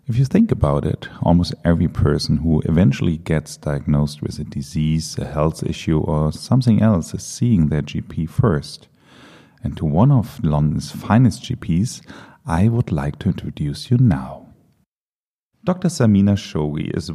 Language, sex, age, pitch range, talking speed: English, male, 40-59, 80-115 Hz, 155 wpm